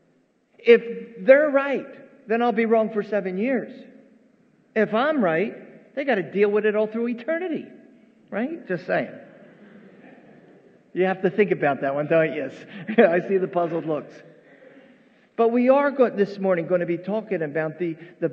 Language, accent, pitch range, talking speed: English, American, 165-230 Hz, 165 wpm